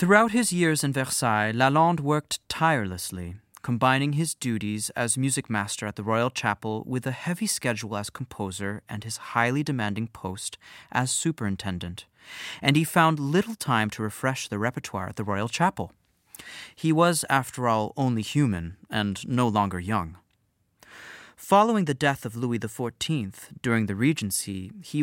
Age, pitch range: 30-49, 105-150 Hz